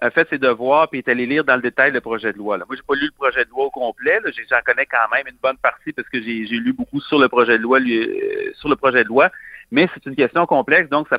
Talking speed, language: 315 wpm, French